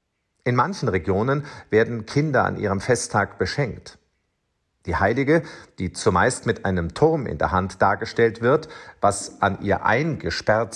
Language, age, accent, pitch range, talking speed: German, 50-69, German, 100-140 Hz, 140 wpm